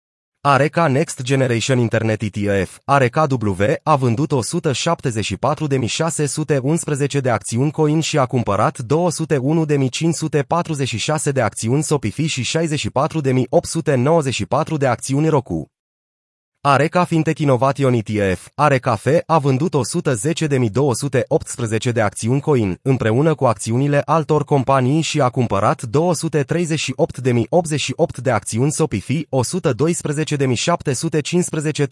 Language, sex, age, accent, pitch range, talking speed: Romanian, male, 30-49, native, 120-155 Hz, 90 wpm